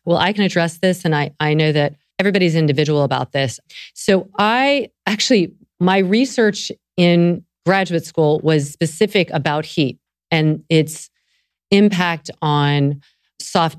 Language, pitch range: English, 150-185 Hz